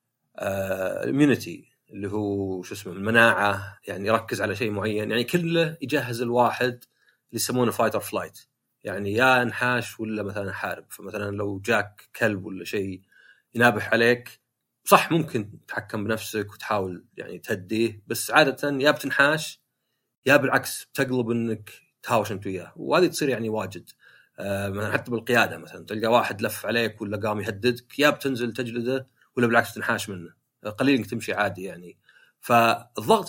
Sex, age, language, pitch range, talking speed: male, 30-49, Arabic, 100-125 Hz, 145 wpm